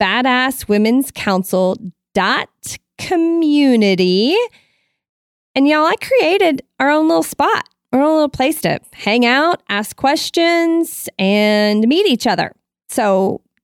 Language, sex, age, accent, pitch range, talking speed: English, female, 30-49, American, 195-275 Hz, 100 wpm